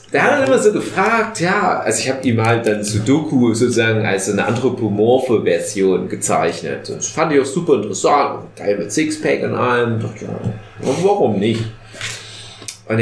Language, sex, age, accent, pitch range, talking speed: German, male, 30-49, German, 110-155 Hz, 165 wpm